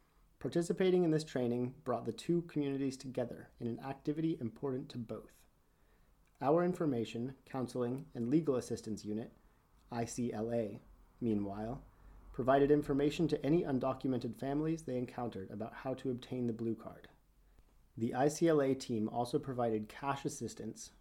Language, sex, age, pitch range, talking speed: English, male, 30-49, 115-140 Hz, 130 wpm